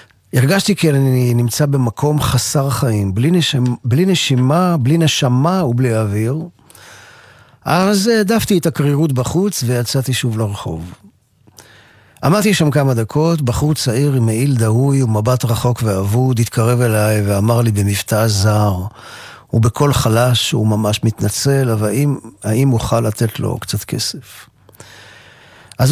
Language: Hebrew